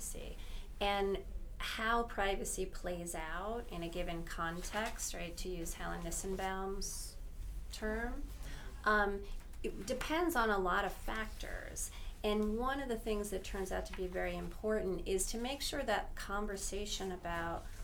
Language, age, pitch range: English, 30-49, 175-215 Hz